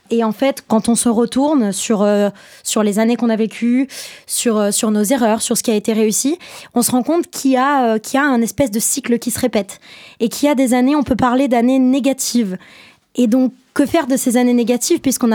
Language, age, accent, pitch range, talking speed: French, 20-39, French, 220-260 Hz, 250 wpm